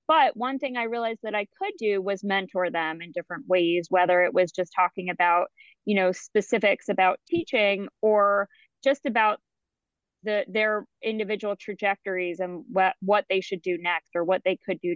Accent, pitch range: American, 195-250 Hz